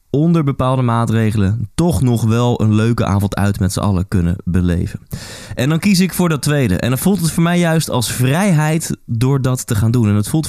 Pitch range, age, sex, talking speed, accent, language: 105-140 Hz, 20-39, male, 225 wpm, Dutch, Dutch